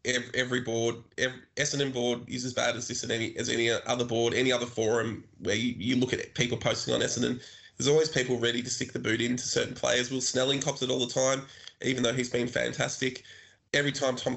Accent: Australian